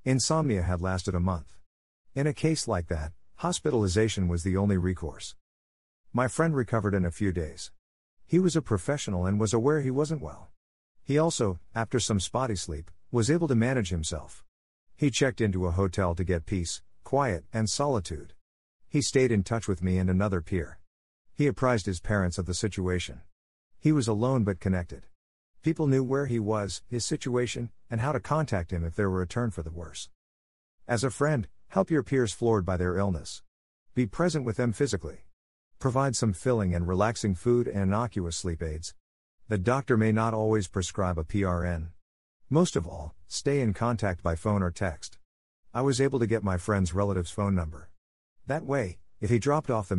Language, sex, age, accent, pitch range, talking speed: English, male, 50-69, American, 85-120 Hz, 185 wpm